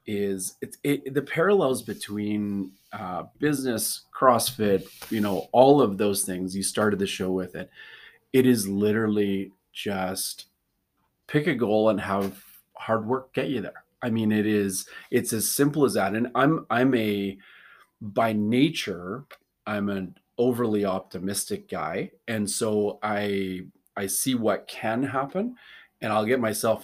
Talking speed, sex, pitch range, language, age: 150 wpm, male, 100-120 Hz, English, 30-49